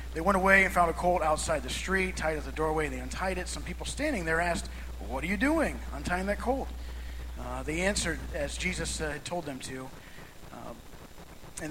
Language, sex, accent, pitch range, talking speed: English, male, American, 150-180 Hz, 210 wpm